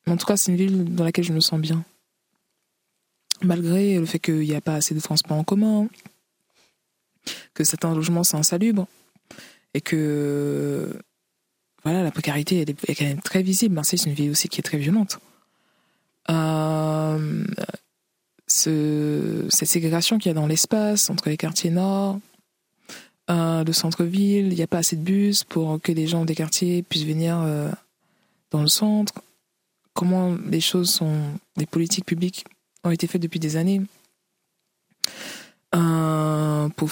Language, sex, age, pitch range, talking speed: French, female, 20-39, 160-190 Hz, 160 wpm